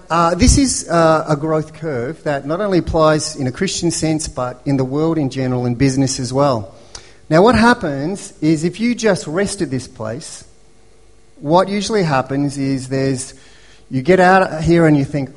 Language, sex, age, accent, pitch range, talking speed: English, male, 40-59, Australian, 135-180 Hz, 190 wpm